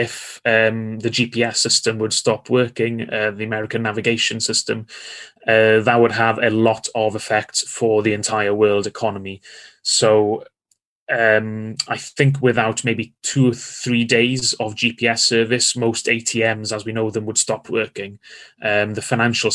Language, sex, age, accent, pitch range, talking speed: Danish, male, 20-39, British, 110-120 Hz, 155 wpm